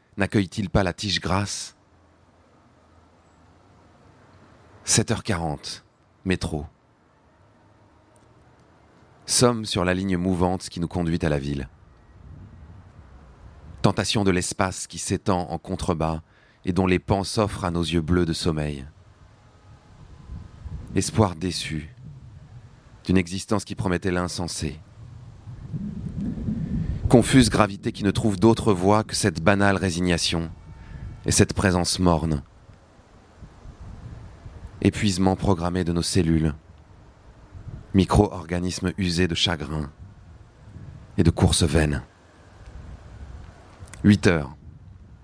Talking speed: 95 wpm